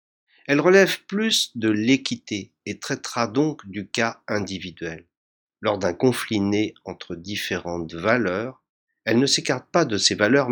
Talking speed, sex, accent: 145 wpm, male, French